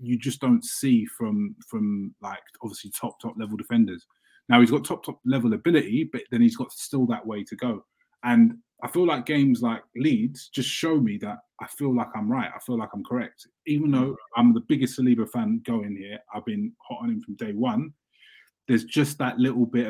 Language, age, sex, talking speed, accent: English, 20-39, male, 215 wpm, British